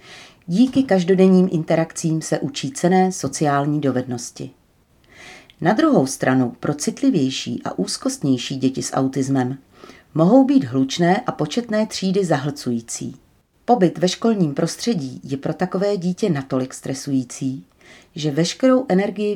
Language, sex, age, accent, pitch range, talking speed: Czech, female, 40-59, native, 140-185 Hz, 120 wpm